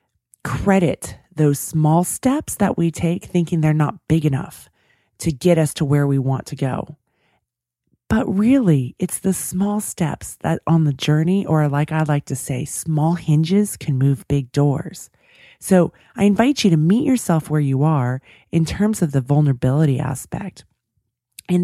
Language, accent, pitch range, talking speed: English, American, 140-175 Hz, 165 wpm